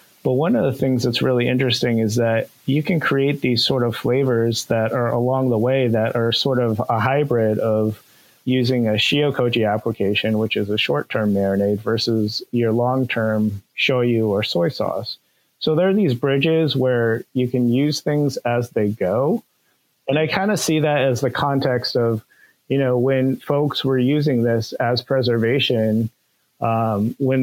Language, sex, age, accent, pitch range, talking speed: English, male, 30-49, American, 115-135 Hz, 175 wpm